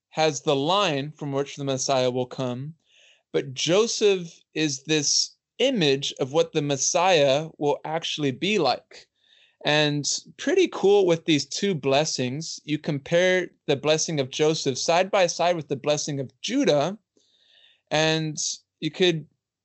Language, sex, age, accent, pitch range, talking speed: English, male, 20-39, American, 135-170 Hz, 140 wpm